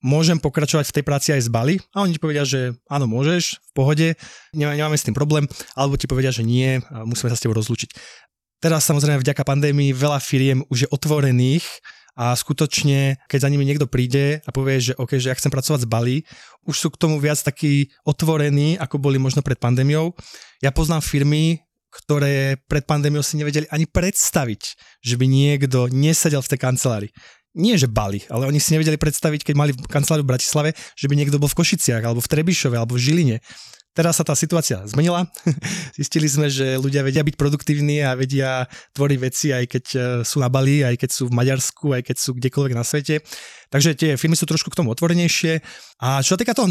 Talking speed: 200 wpm